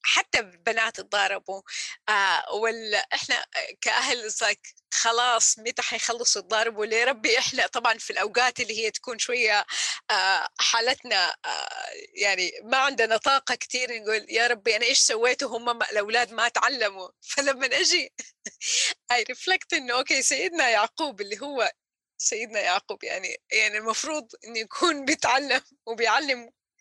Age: 20-39